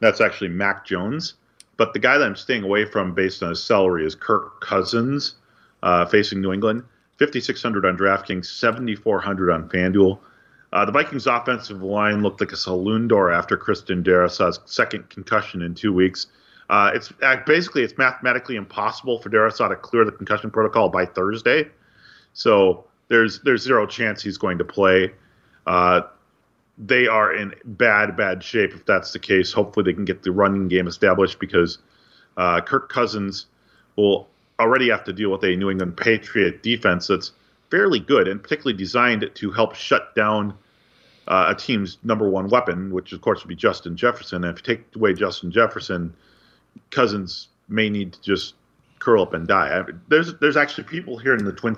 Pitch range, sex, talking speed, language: 95-115 Hz, male, 180 wpm, English